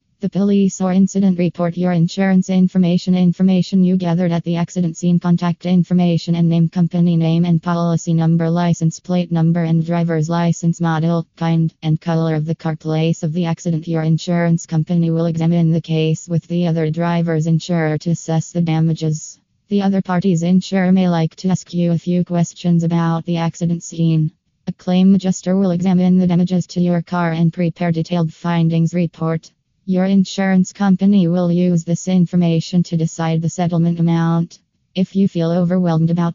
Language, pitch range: English, 165-180 Hz